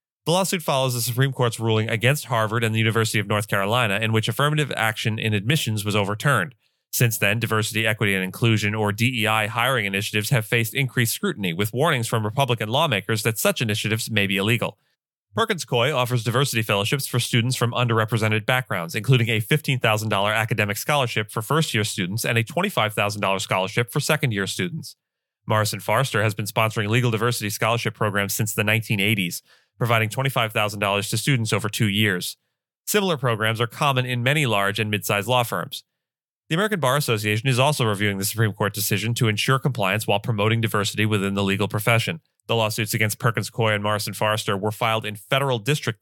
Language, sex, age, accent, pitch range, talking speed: English, male, 30-49, American, 105-125 Hz, 180 wpm